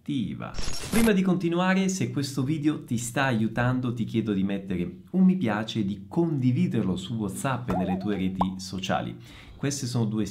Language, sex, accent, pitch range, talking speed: Italian, male, native, 90-130 Hz, 170 wpm